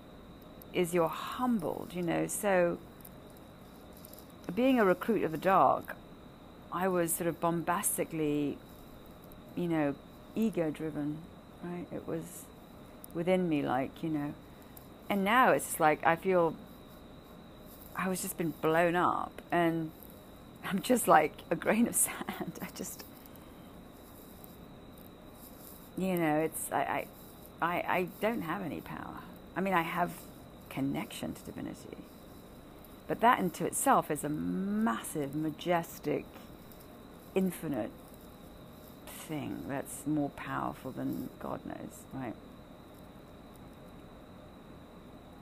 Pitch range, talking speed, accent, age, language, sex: 145-180 Hz, 110 wpm, British, 40-59, English, female